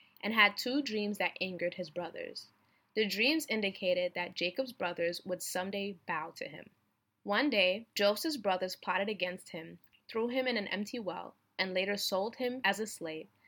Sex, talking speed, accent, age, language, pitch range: female, 175 wpm, American, 20-39, English, 180-230 Hz